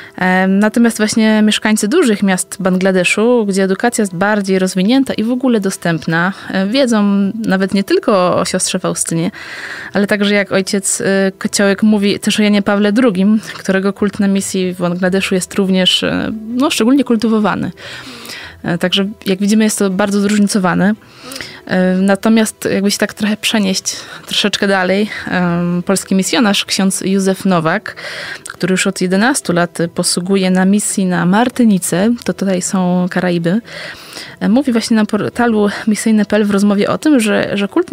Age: 20-39